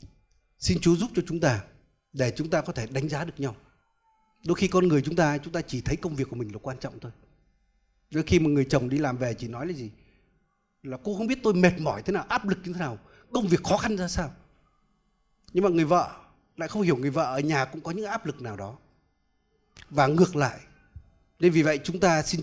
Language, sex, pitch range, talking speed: Vietnamese, male, 140-185 Hz, 245 wpm